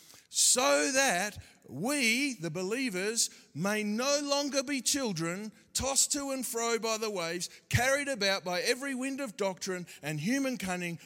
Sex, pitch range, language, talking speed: male, 195-250 Hz, English, 145 wpm